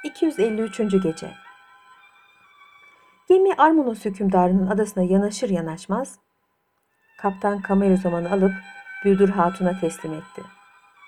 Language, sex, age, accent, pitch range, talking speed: Turkish, female, 60-79, native, 185-260 Hz, 85 wpm